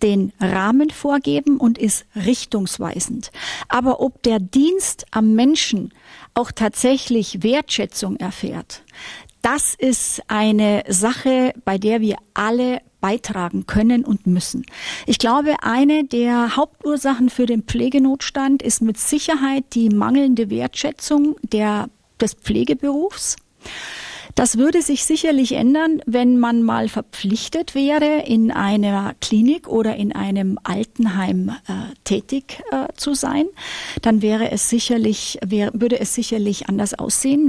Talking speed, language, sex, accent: 125 wpm, German, female, German